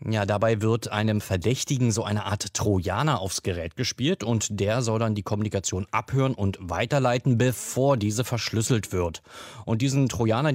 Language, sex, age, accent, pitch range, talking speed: German, male, 30-49, German, 105-135 Hz, 160 wpm